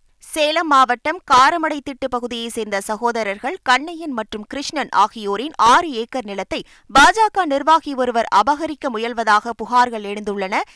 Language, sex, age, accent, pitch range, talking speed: Tamil, female, 20-39, native, 220-285 Hz, 110 wpm